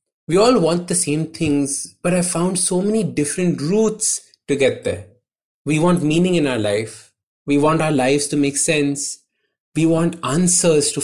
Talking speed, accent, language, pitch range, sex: 180 wpm, Indian, English, 135-175 Hz, male